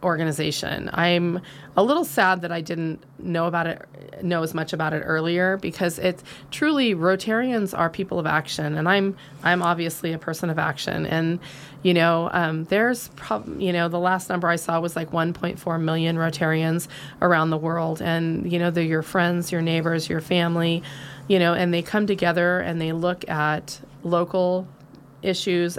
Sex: female